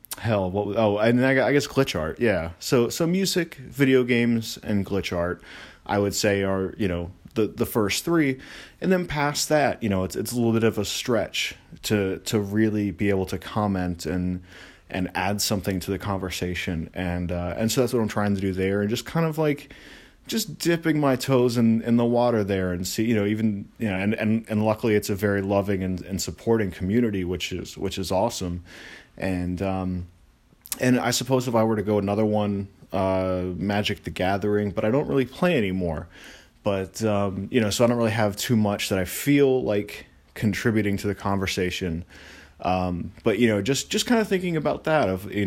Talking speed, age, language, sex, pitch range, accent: 210 wpm, 30-49, English, male, 95-115 Hz, American